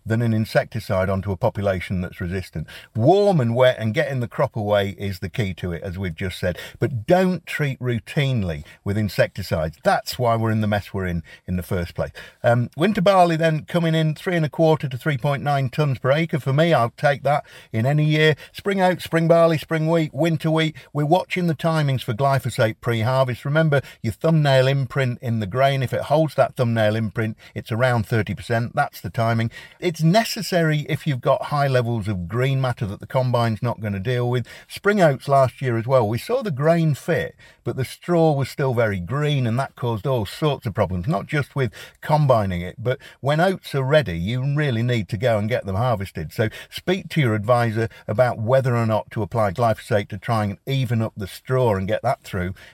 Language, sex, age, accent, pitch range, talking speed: English, male, 50-69, British, 105-145 Hz, 210 wpm